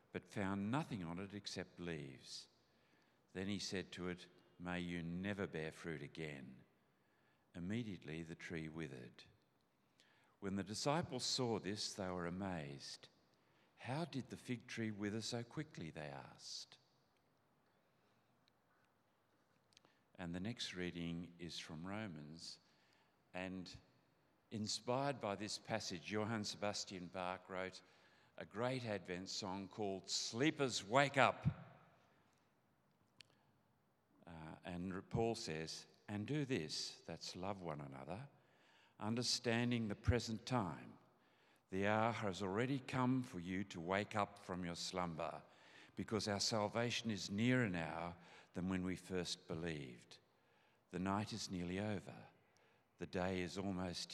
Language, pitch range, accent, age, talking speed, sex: English, 90-110 Hz, Australian, 50-69, 125 wpm, male